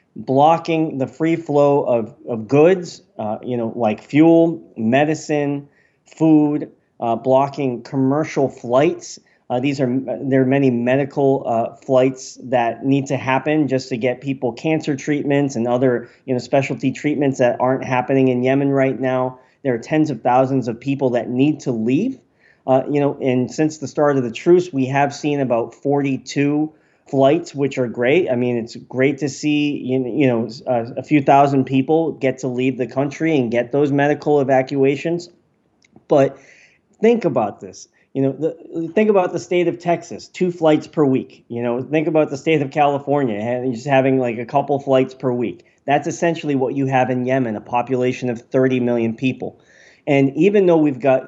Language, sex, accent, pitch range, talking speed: English, male, American, 130-150 Hz, 180 wpm